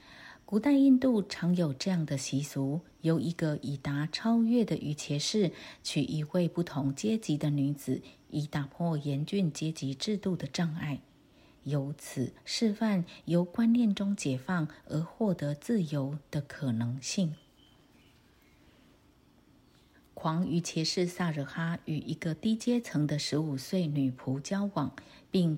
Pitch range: 145-190 Hz